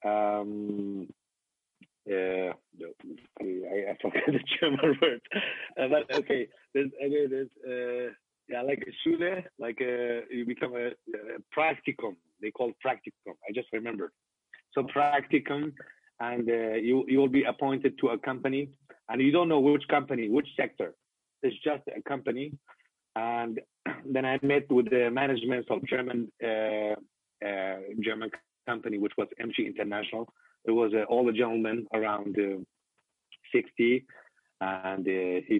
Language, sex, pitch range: English, male, 105-135 Hz